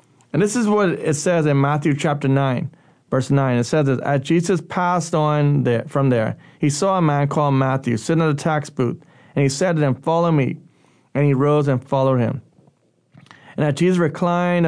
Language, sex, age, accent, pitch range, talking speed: English, male, 30-49, American, 140-170 Hz, 200 wpm